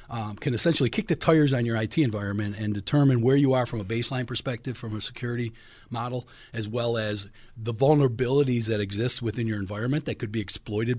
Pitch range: 105-130 Hz